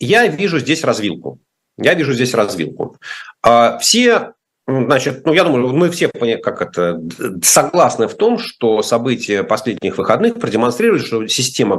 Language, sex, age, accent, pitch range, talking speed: Russian, male, 40-59, native, 120-175 Hz, 135 wpm